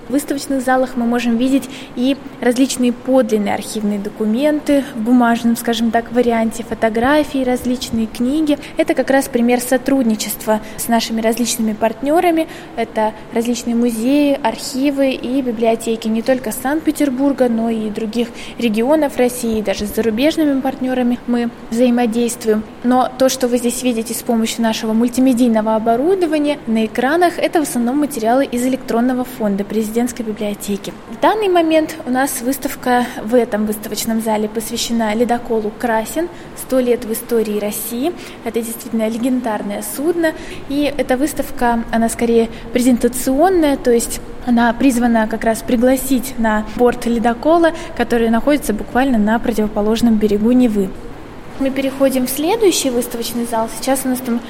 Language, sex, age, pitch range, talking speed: Russian, female, 20-39, 230-265 Hz, 135 wpm